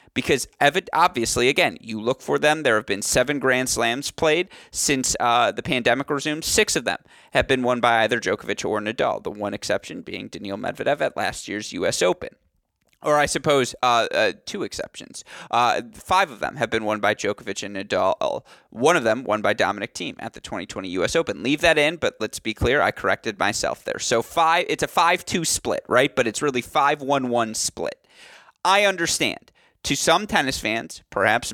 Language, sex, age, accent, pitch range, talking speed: English, male, 30-49, American, 115-150 Hz, 190 wpm